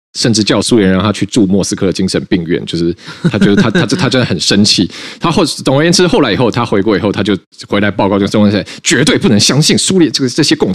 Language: Chinese